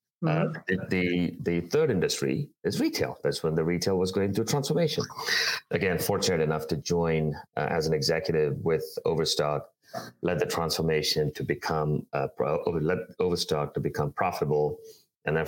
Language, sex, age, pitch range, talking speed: English, male, 30-49, 75-95 Hz, 140 wpm